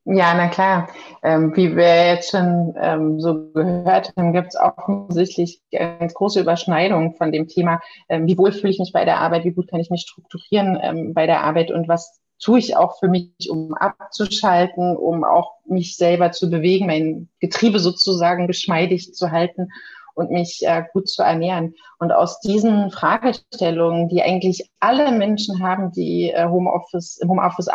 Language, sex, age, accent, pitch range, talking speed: German, female, 30-49, German, 170-200 Hz, 160 wpm